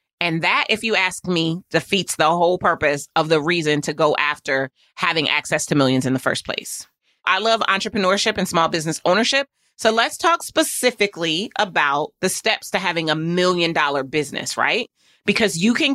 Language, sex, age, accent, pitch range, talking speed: English, female, 30-49, American, 160-210 Hz, 180 wpm